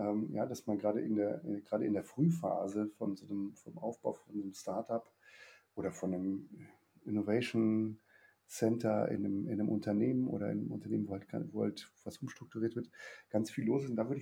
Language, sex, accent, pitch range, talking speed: German, male, German, 105-135 Hz, 195 wpm